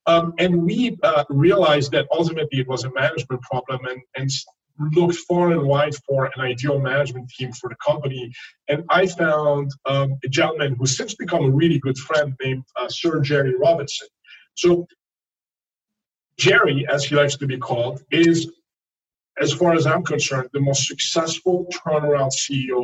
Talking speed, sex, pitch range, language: 165 wpm, male, 130-165 Hz, English